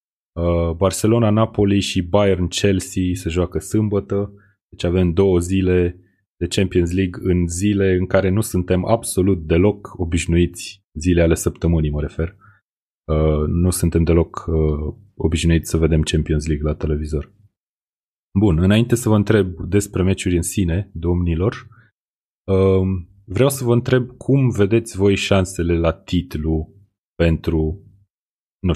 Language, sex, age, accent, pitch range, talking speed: Romanian, male, 30-49, native, 85-100 Hz, 125 wpm